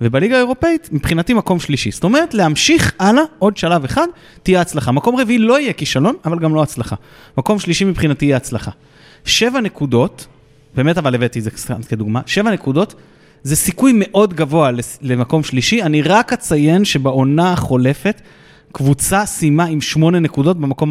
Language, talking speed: Hebrew, 155 wpm